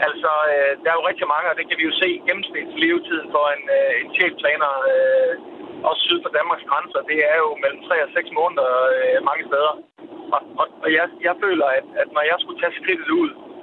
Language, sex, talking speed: Danish, male, 205 wpm